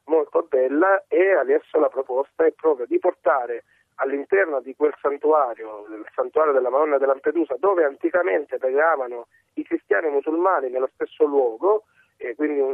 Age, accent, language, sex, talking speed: 40-59, native, Italian, male, 140 wpm